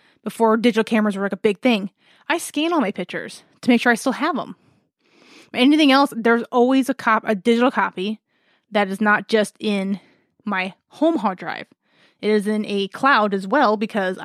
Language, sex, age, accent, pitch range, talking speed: English, female, 20-39, American, 205-250 Hz, 195 wpm